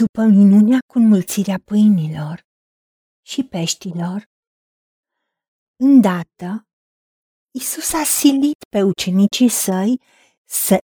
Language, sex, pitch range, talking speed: Romanian, female, 185-255 Hz, 85 wpm